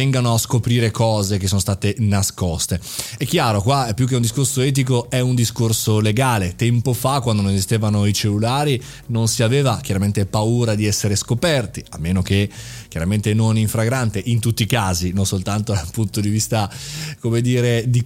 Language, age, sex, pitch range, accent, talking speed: Italian, 30-49, male, 105-130 Hz, native, 180 wpm